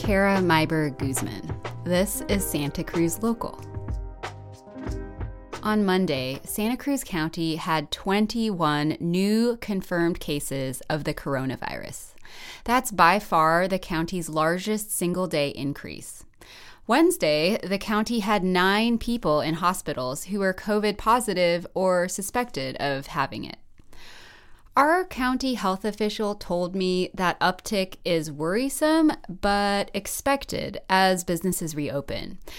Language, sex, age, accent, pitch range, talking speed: English, female, 20-39, American, 160-220 Hz, 110 wpm